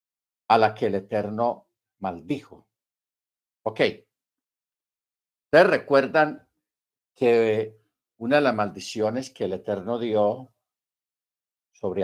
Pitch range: 105-140 Hz